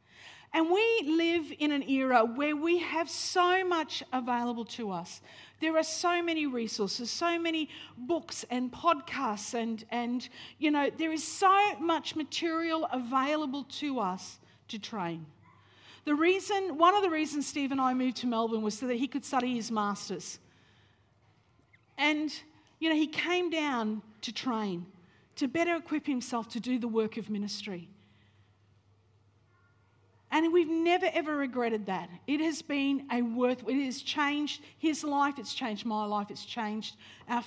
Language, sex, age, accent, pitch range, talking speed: English, female, 50-69, Australian, 210-310 Hz, 160 wpm